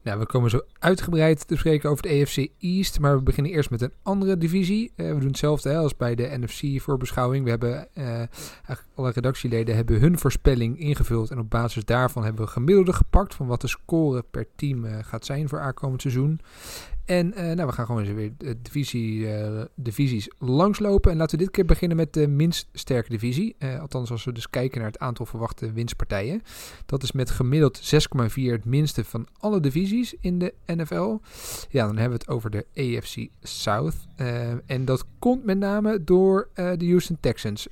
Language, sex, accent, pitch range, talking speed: Dutch, male, Dutch, 120-160 Hz, 200 wpm